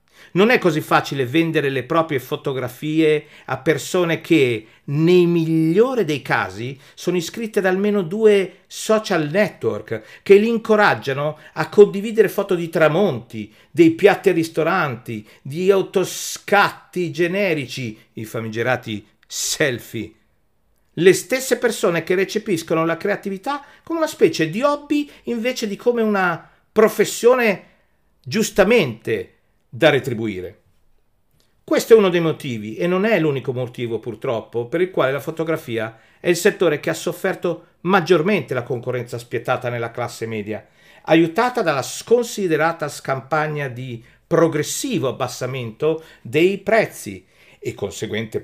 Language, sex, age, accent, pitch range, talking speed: Italian, male, 50-69, native, 120-195 Hz, 125 wpm